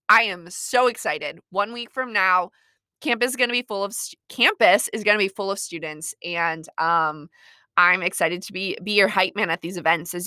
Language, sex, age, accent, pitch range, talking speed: English, female, 20-39, American, 180-255 Hz, 220 wpm